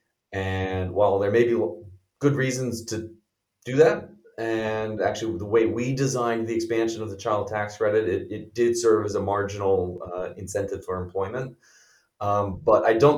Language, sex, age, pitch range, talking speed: English, male, 30-49, 95-130 Hz, 175 wpm